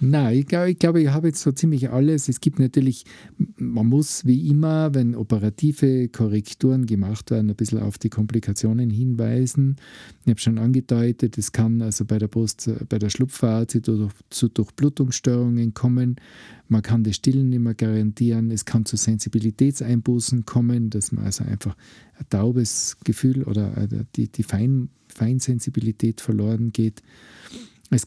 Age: 40-59